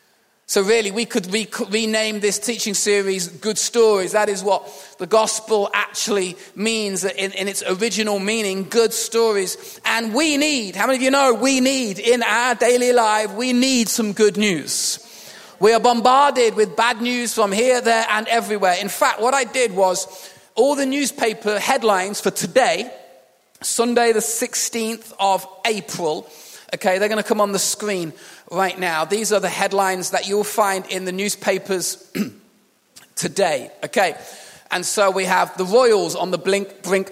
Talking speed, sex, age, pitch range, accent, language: 165 wpm, male, 30-49, 190-225 Hz, British, English